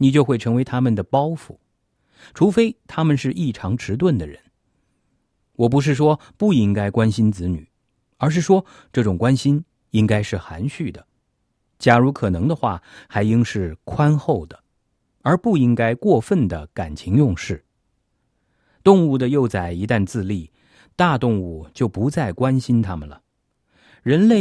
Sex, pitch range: male, 105-145 Hz